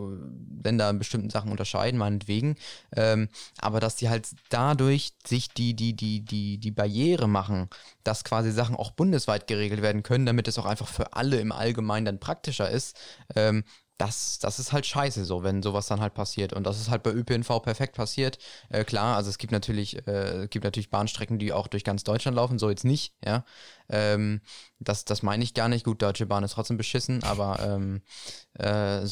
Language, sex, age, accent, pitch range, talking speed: German, male, 20-39, German, 105-130 Hz, 195 wpm